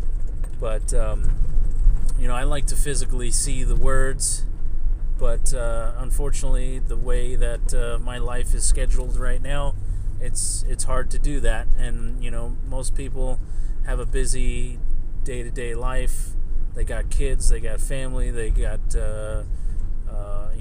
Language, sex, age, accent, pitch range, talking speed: English, male, 30-49, American, 85-120 Hz, 145 wpm